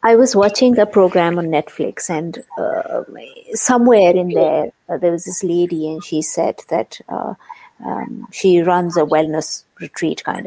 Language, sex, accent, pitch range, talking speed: English, female, Indian, 175-225 Hz, 165 wpm